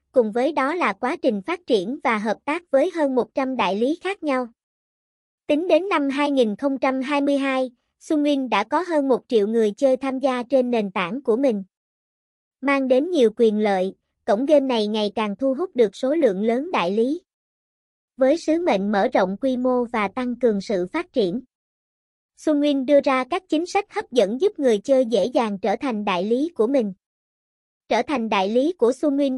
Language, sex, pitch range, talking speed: Vietnamese, male, 225-290 Hz, 190 wpm